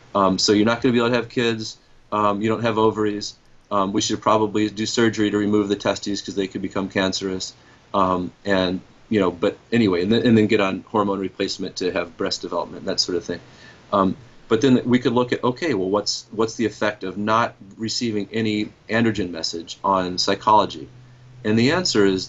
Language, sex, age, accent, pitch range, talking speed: English, male, 30-49, American, 95-115 Hz, 210 wpm